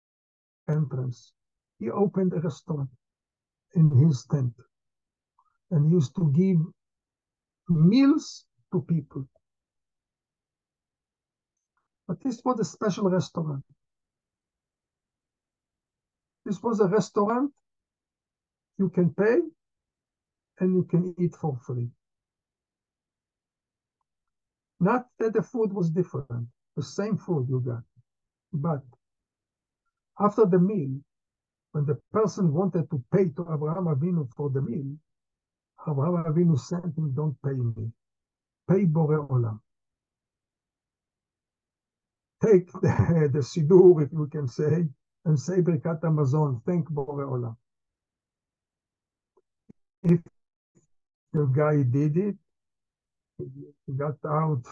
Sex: male